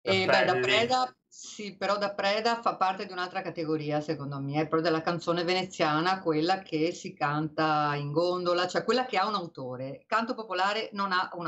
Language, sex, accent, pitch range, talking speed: Italian, female, native, 165-200 Hz, 200 wpm